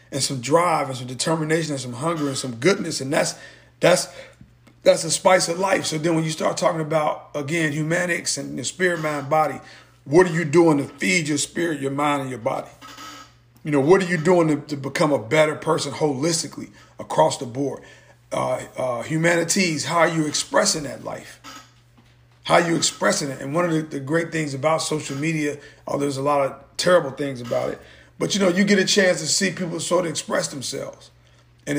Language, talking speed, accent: English, 210 wpm, American